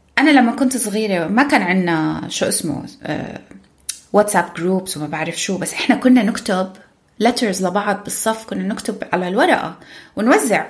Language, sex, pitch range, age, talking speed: Arabic, female, 200-280 Hz, 20-39, 150 wpm